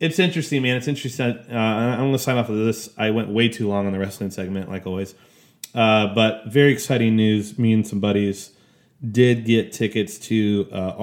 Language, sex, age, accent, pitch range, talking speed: English, male, 30-49, American, 100-120 Hz, 205 wpm